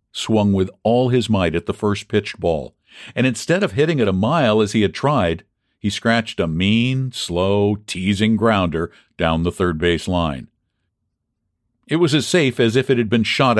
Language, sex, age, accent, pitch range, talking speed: English, male, 50-69, American, 90-120 Hz, 180 wpm